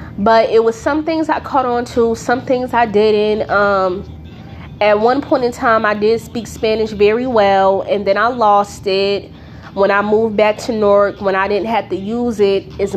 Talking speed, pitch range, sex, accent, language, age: 205 wpm, 200-240 Hz, female, American, English, 20-39